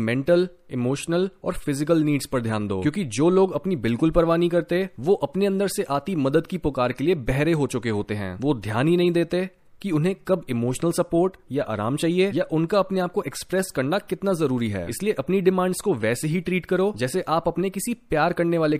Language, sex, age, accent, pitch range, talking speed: Hindi, male, 20-39, native, 130-180 Hz, 220 wpm